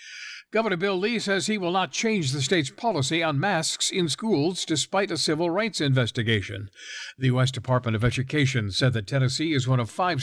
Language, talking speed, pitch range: English, 190 wpm, 120-155 Hz